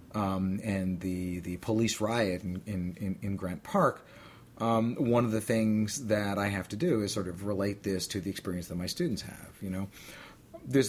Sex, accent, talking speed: male, American, 200 wpm